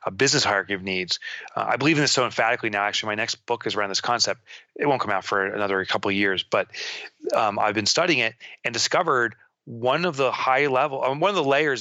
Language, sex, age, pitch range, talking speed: English, male, 30-49, 110-135 Hz, 240 wpm